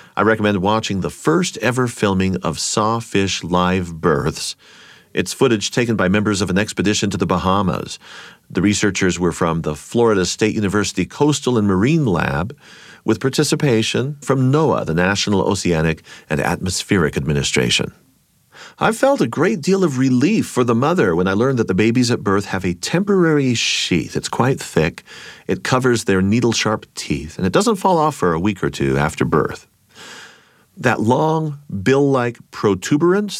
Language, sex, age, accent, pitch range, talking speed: English, male, 40-59, American, 95-150 Hz, 160 wpm